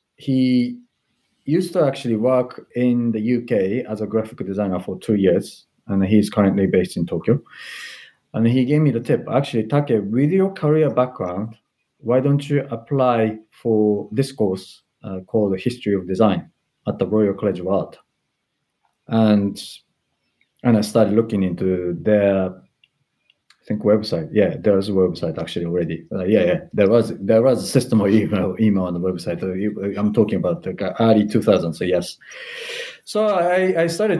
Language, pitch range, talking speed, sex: English, 100-125 Hz, 165 wpm, male